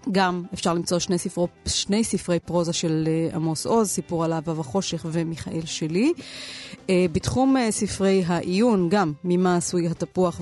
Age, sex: 30-49, female